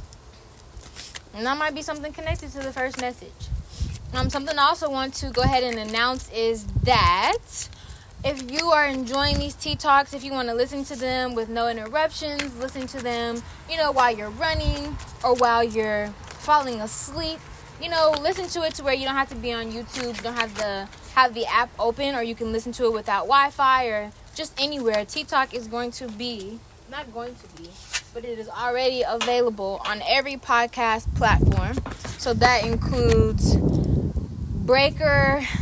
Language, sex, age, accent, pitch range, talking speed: English, female, 10-29, American, 230-275 Hz, 180 wpm